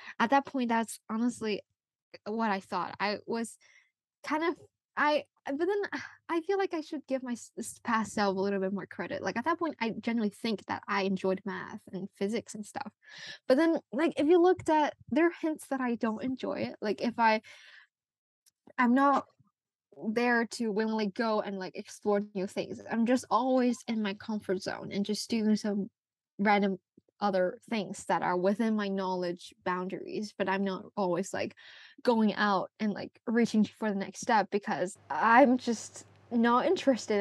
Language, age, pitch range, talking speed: English, 10-29, 200-275 Hz, 180 wpm